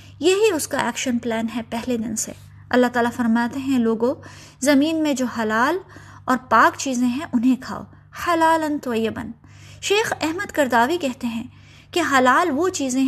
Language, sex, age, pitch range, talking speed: Urdu, female, 20-39, 235-310 Hz, 160 wpm